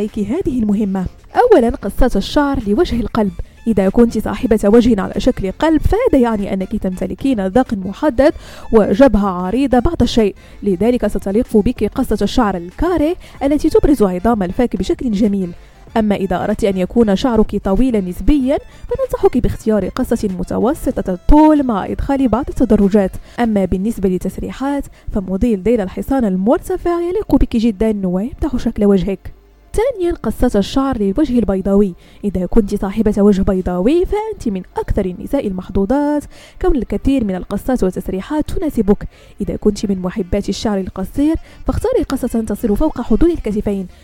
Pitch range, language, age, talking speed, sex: 200-275 Hz, French, 20-39, 135 wpm, female